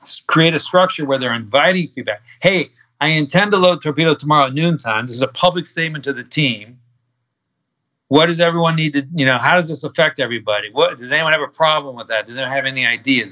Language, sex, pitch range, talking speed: English, male, 125-165 Hz, 220 wpm